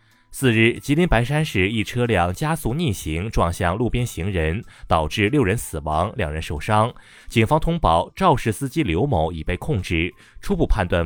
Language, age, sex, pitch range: Chinese, 20-39, male, 85-130 Hz